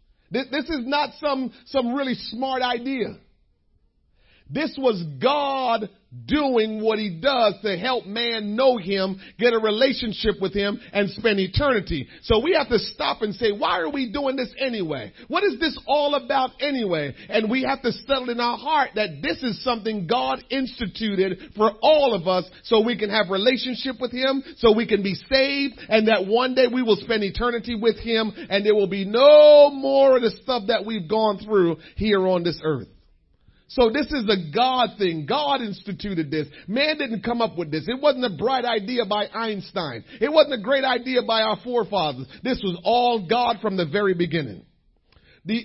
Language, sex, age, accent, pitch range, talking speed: English, male, 40-59, American, 195-255 Hz, 190 wpm